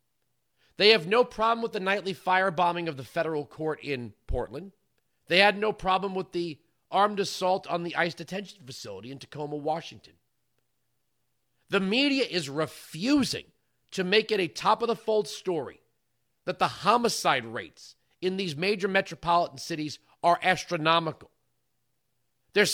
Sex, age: male, 40-59